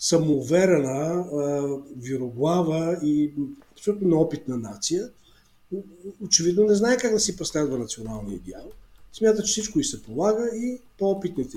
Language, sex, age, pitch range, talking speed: English, male, 50-69, 155-205 Hz, 120 wpm